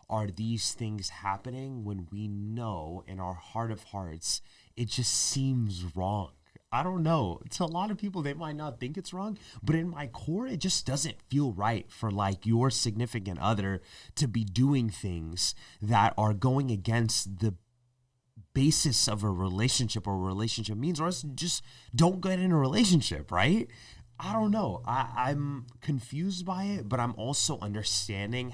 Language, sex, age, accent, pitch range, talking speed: English, male, 30-49, American, 105-145 Hz, 170 wpm